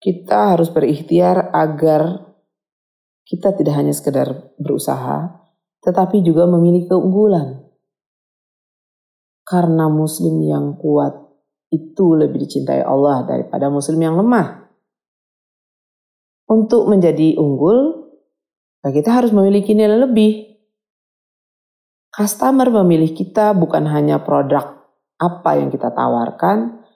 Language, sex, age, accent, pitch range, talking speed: Indonesian, female, 40-59, native, 140-205 Hz, 95 wpm